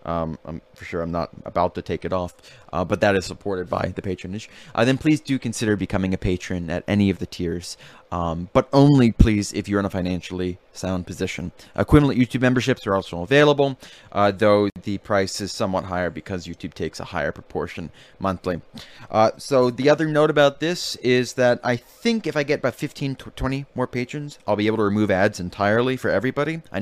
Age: 30-49